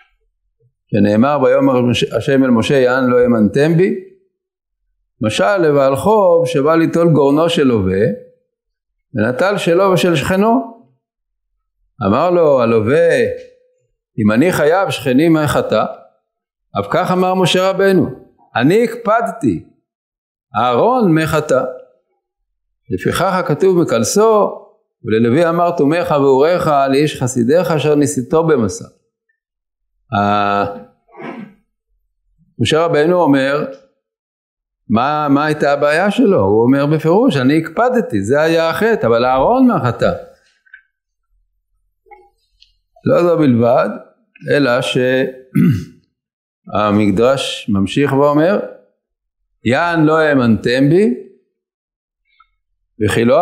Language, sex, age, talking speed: English, male, 50-69, 95 wpm